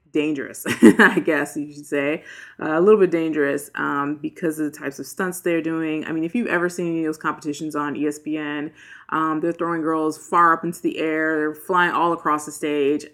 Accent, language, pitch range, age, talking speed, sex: American, English, 150-190 Hz, 20-39, 210 wpm, female